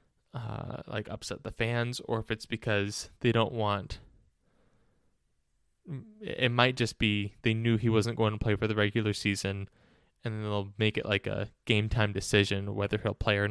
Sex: male